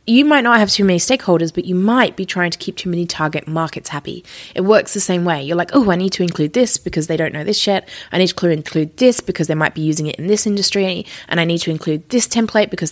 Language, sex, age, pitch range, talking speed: English, female, 20-39, 160-205 Hz, 280 wpm